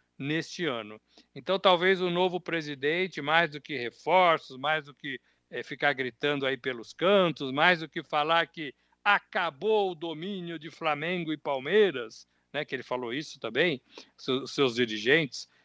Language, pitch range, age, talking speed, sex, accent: Portuguese, 135-170 Hz, 60-79, 155 wpm, male, Brazilian